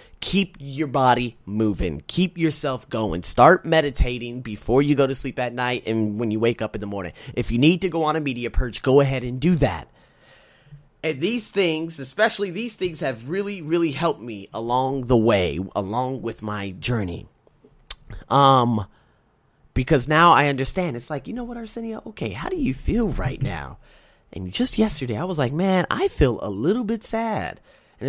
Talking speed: 190 wpm